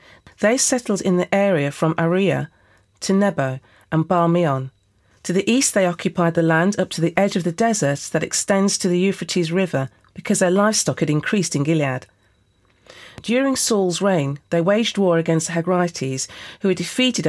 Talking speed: 175 wpm